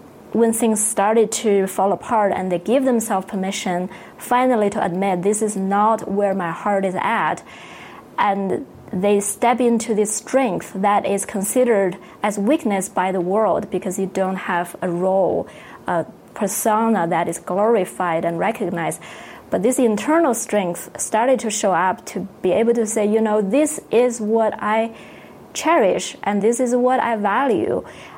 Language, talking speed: English, 160 wpm